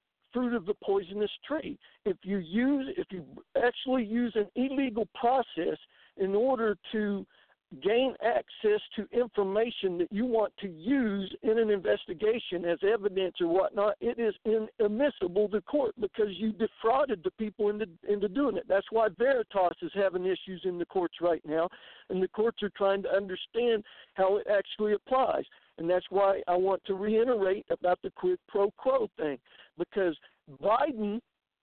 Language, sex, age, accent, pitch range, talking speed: English, male, 60-79, American, 195-240 Hz, 160 wpm